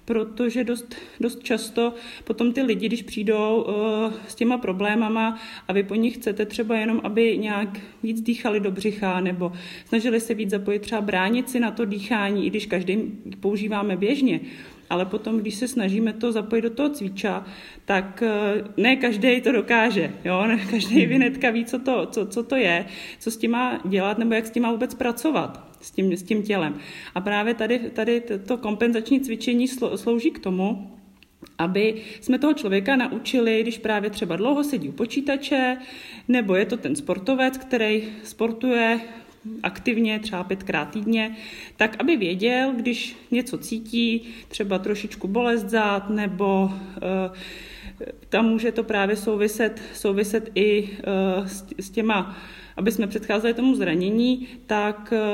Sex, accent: male, native